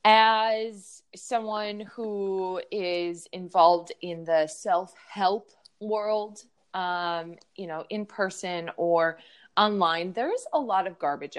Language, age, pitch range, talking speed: English, 20-39, 165-205 Hz, 110 wpm